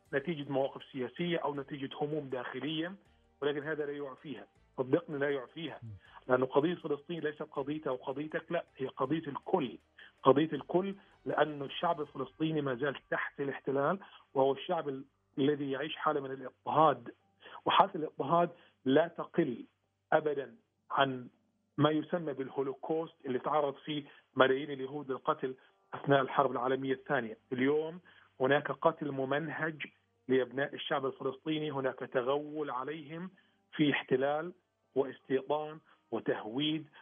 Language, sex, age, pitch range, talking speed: Arabic, male, 40-59, 130-155 Hz, 120 wpm